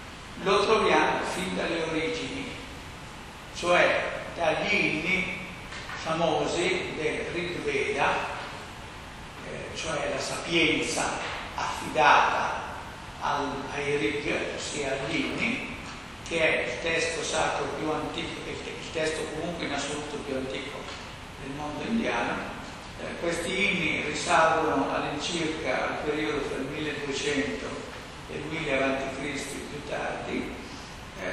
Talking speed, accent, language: 105 wpm, native, Italian